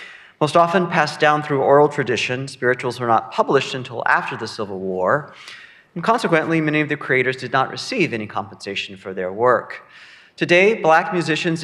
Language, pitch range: English, 105-155 Hz